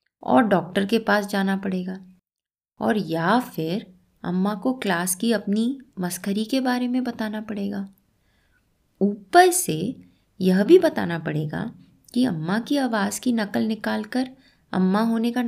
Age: 20-39